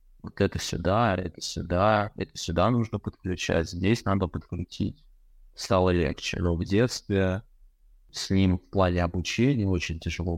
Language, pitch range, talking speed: Russian, 85-100 Hz, 140 wpm